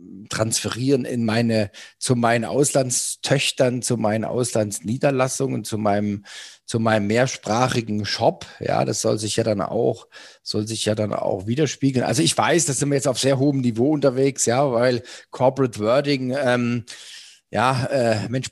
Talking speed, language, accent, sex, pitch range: 155 wpm, German, German, male, 110-135 Hz